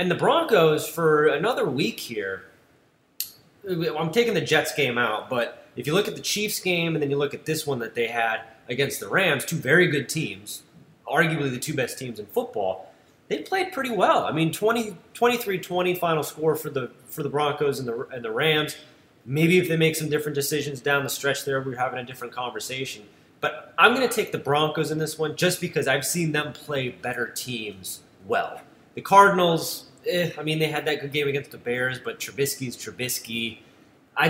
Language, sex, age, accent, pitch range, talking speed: English, male, 30-49, American, 125-165 Hz, 200 wpm